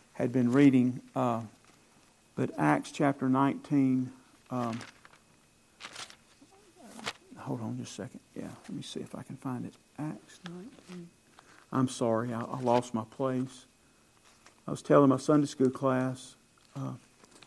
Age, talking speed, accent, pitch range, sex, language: 50-69, 135 wpm, American, 120-140 Hz, male, English